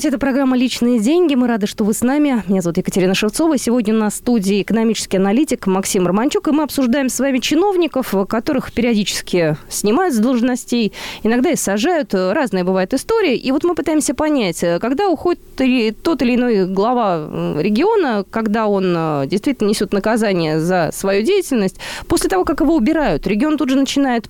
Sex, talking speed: female, 170 wpm